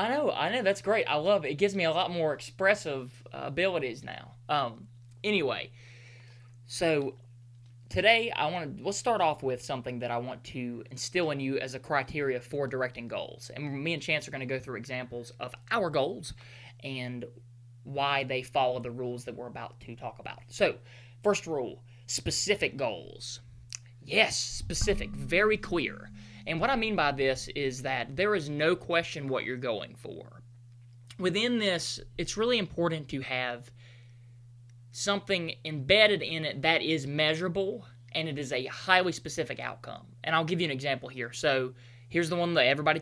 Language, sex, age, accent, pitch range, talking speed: English, male, 20-39, American, 120-155 Hz, 180 wpm